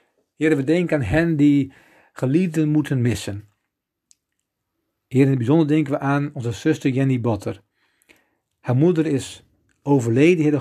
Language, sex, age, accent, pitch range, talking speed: Dutch, male, 50-69, Dutch, 110-155 Hz, 140 wpm